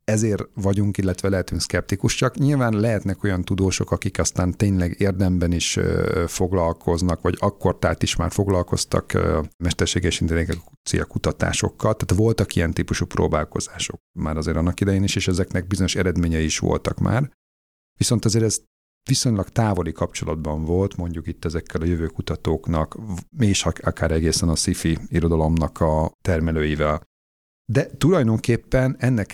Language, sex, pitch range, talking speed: Hungarian, male, 85-105 Hz, 140 wpm